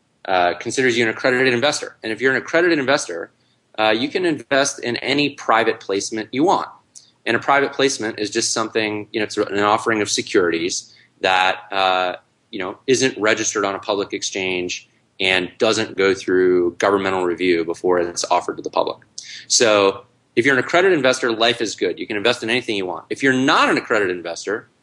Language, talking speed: English, 195 wpm